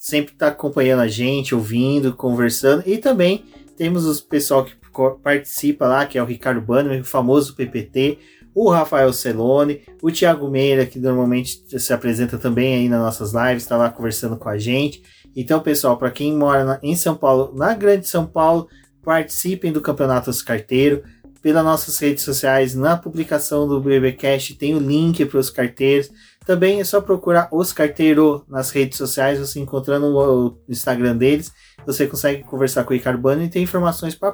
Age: 20-39